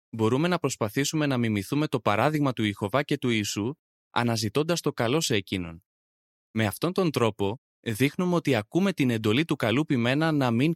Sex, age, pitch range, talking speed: male, 20-39, 105-145 Hz, 175 wpm